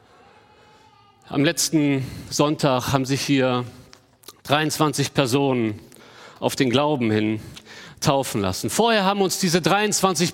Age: 40-59